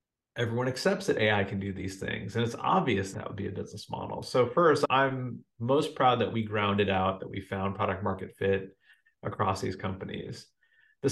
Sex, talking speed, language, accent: male, 195 wpm, English, American